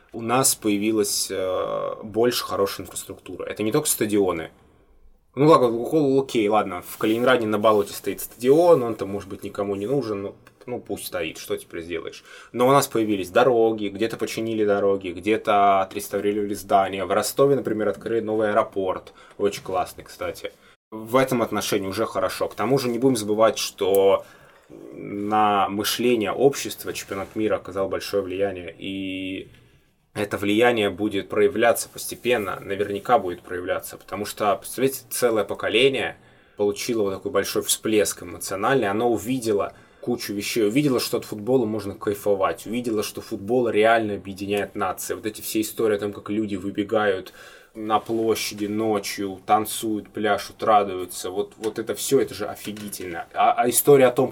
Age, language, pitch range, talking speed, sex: 20-39, Russian, 100-120 Hz, 150 wpm, male